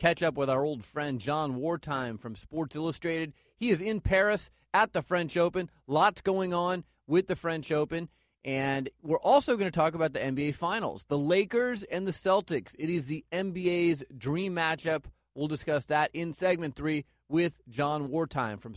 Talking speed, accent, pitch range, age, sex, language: 180 wpm, American, 155-200 Hz, 30-49, male, English